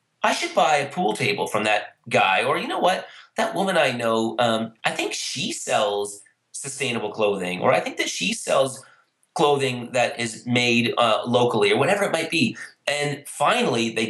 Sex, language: male, English